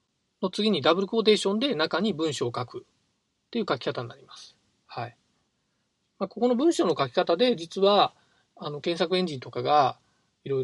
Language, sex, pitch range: Japanese, male, 140-220 Hz